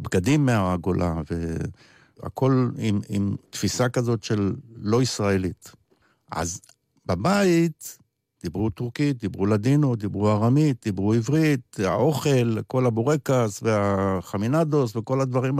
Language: Hebrew